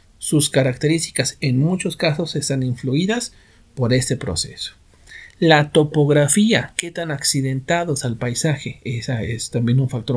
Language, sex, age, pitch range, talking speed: Spanish, male, 50-69, 130-180 Hz, 130 wpm